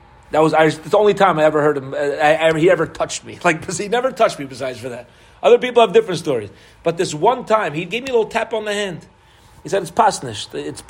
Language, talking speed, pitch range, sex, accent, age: English, 270 wpm, 150-200 Hz, male, American, 40-59